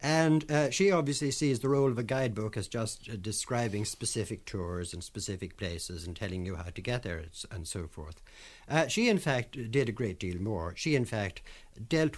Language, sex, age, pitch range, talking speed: English, male, 60-79, 110-150 Hz, 205 wpm